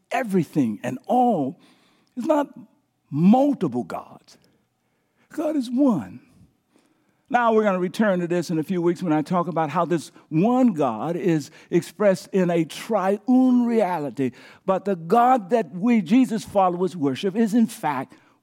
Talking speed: 150 wpm